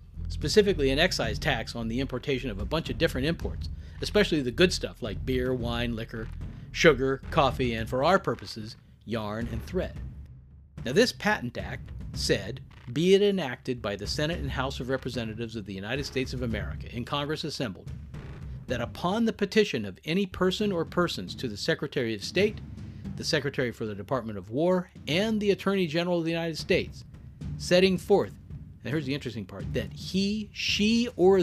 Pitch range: 115-170 Hz